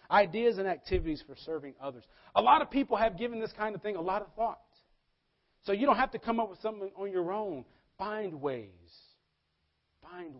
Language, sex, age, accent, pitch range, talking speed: English, male, 40-59, American, 130-180 Hz, 200 wpm